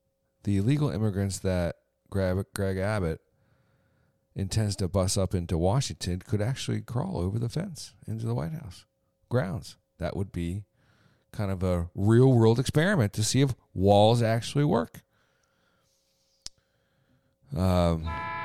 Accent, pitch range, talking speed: American, 90-115 Hz, 125 wpm